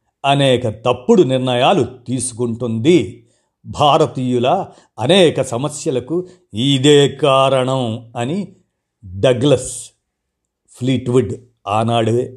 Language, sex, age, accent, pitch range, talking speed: Telugu, male, 50-69, native, 115-140 Hz, 65 wpm